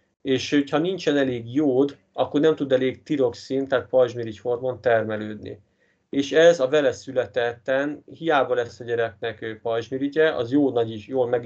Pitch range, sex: 115-140 Hz, male